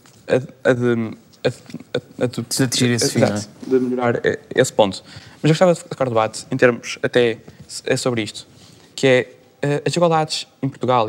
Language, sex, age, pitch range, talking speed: Portuguese, male, 20-39, 125-145 Hz, 130 wpm